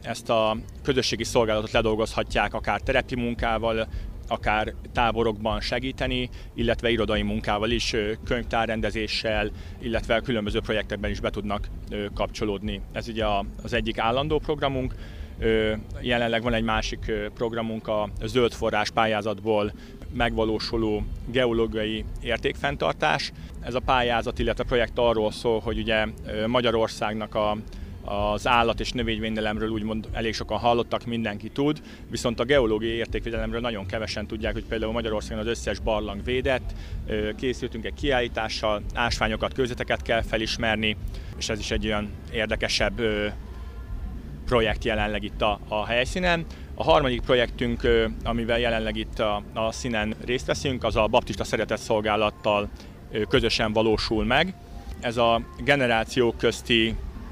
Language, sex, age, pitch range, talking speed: Hungarian, male, 30-49, 105-115 Hz, 120 wpm